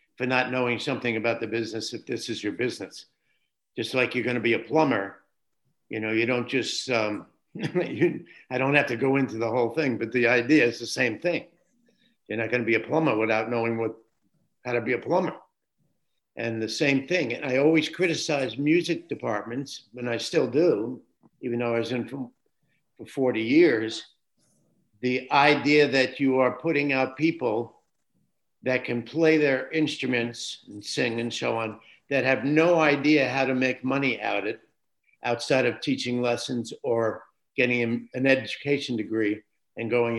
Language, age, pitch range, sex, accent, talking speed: English, 60-79, 115-145 Hz, male, American, 180 wpm